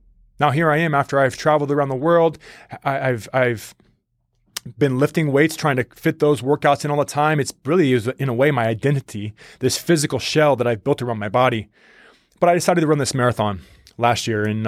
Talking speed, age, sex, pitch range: 210 wpm, 30-49, male, 115-150 Hz